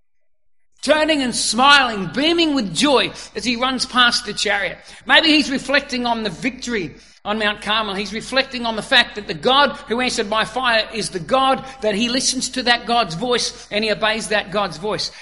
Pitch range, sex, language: 215-260 Hz, male, English